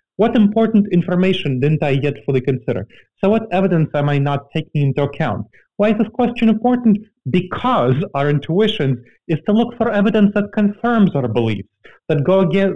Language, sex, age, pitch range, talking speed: English, male, 30-49, 135-190 Hz, 165 wpm